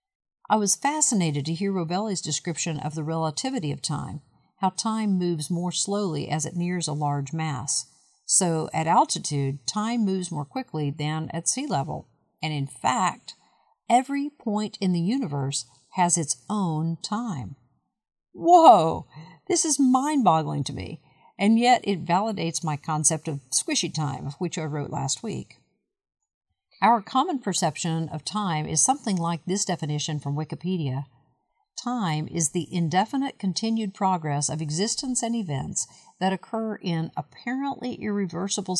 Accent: American